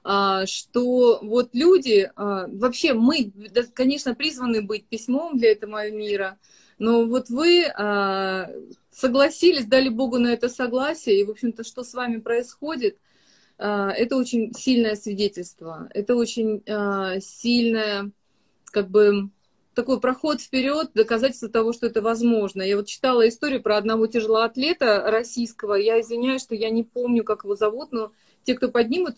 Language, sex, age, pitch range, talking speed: Russian, female, 30-49, 215-255 Hz, 135 wpm